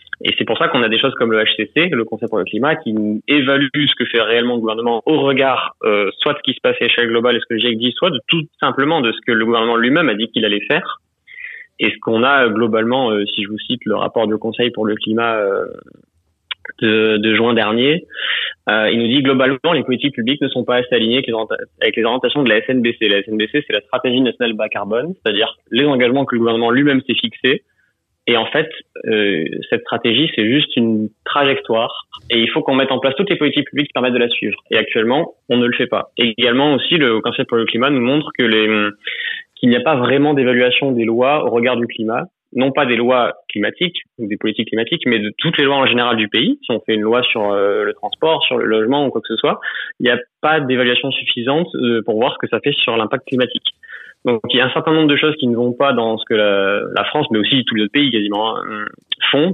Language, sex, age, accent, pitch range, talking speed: French, male, 20-39, French, 110-140 Hz, 245 wpm